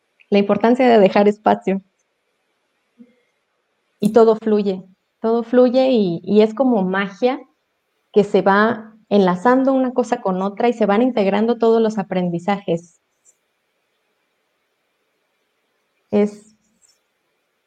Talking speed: 105 wpm